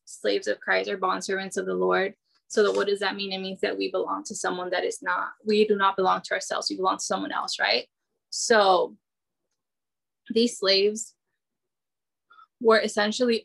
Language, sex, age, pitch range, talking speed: English, female, 10-29, 195-230 Hz, 180 wpm